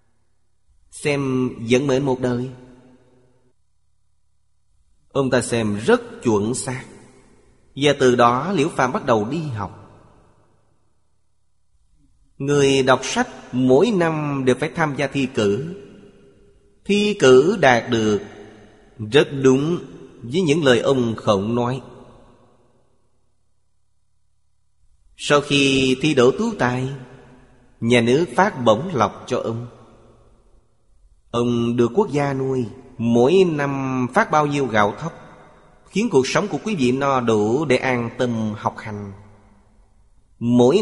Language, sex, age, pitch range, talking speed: Vietnamese, male, 30-49, 105-135 Hz, 120 wpm